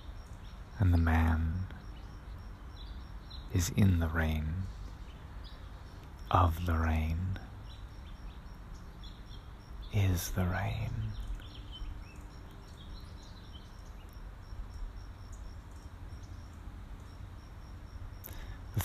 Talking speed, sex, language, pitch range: 45 wpm, male, English, 85-95 Hz